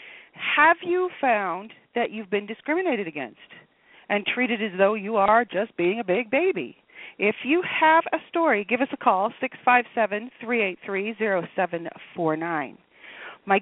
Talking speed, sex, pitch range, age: 140 wpm, female, 185-260 Hz, 40-59